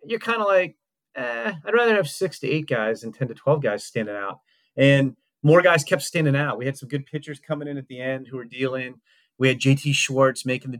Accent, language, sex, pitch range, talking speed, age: American, English, male, 115-145 Hz, 245 wpm, 30-49